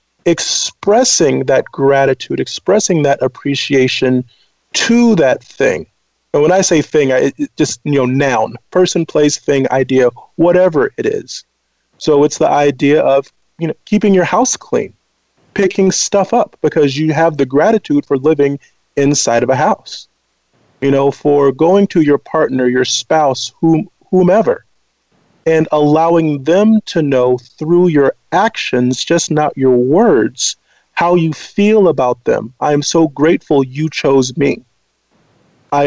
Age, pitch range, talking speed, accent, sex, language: 40-59, 135-175 Hz, 145 wpm, American, male, English